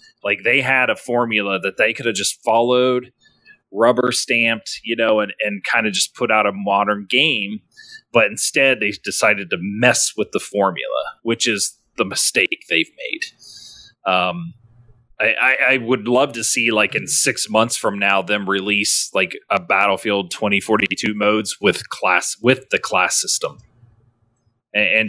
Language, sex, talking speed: English, male, 165 wpm